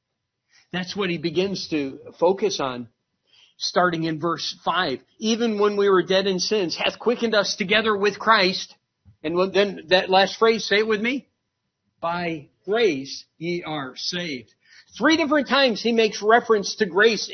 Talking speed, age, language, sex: 160 wpm, 50-69, English, male